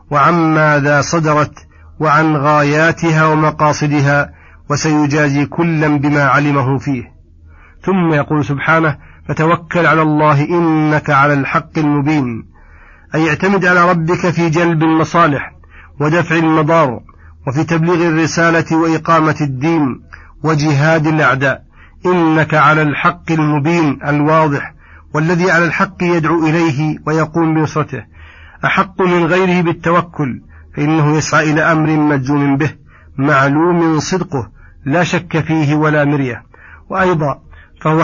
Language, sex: Arabic, male